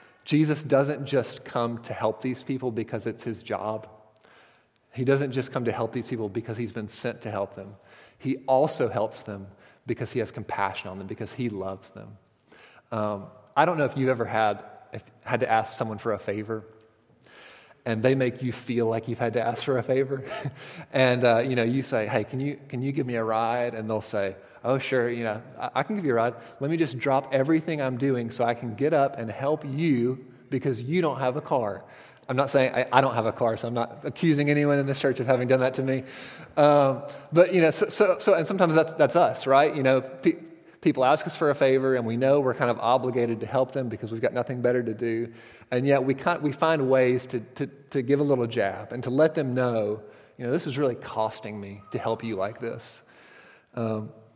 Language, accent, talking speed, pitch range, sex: English, American, 235 wpm, 115-135 Hz, male